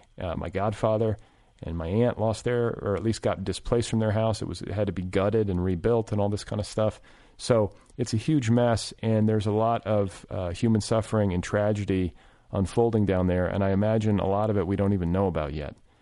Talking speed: 230 wpm